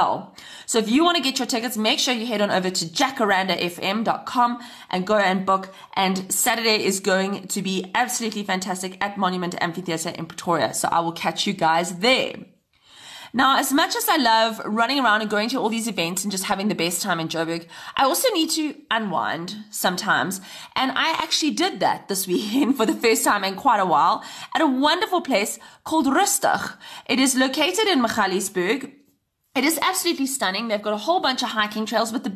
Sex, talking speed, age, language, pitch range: female, 200 wpm, 20-39, English, 190-265 Hz